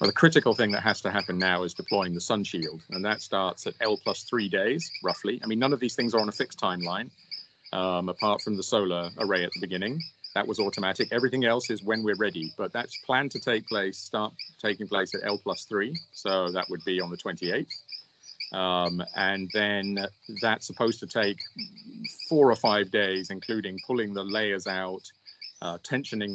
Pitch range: 95-115 Hz